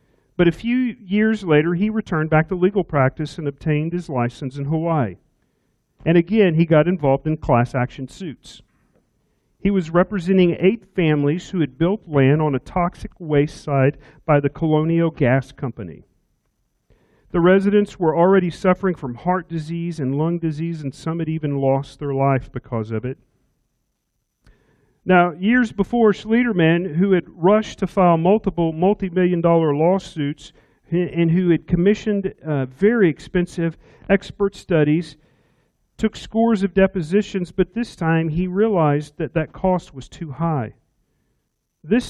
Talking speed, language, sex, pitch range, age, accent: 150 wpm, English, male, 145-185 Hz, 40-59, American